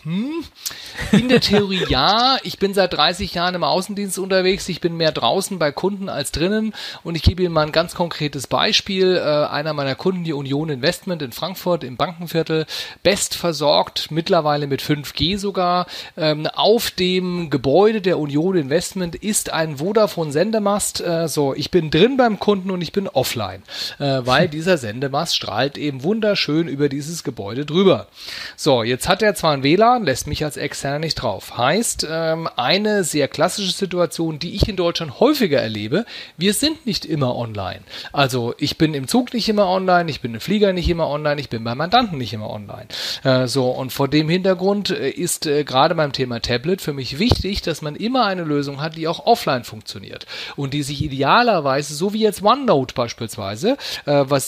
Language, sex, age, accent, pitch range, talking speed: German, male, 40-59, German, 140-190 Hz, 175 wpm